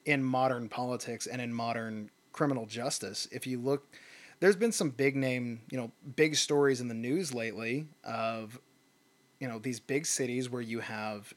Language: English